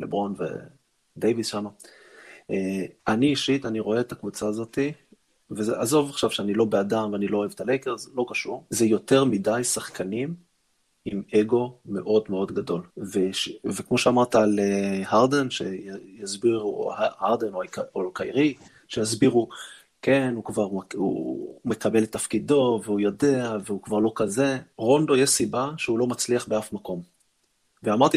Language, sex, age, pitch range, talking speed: Hebrew, male, 30-49, 105-130 Hz, 135 wpm